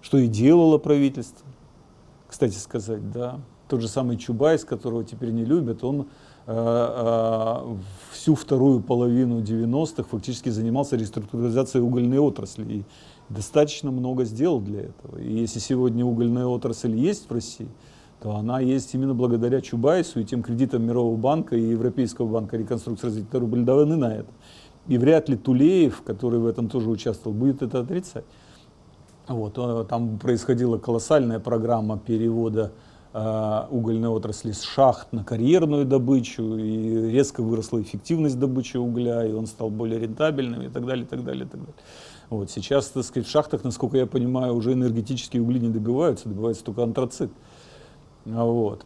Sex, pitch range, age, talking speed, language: male, 115-130 Hz, 40-59, 150 wpm, Russian